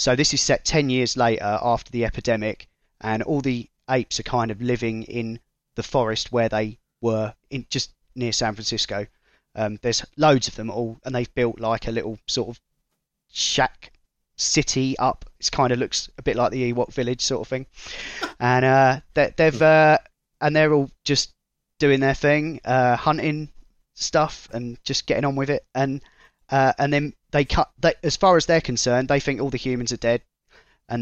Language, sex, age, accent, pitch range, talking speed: English, male, 20-39, British, 115-135 Hz, 195 wpm